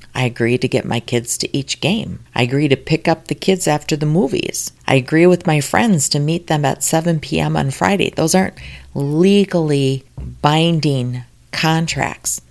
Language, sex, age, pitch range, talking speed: English, female, 40-59, 130-175 Hz, 180 wpm